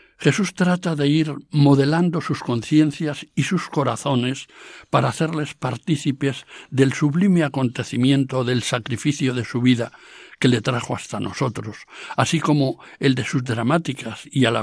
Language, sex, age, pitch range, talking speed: Spanish, male, 60-79, 125-155 Hz, 145 wpm